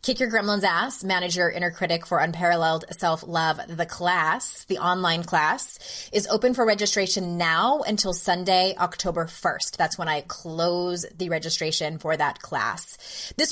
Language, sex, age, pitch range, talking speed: English, female, 20-39, 175-205 Hz, 150 wpm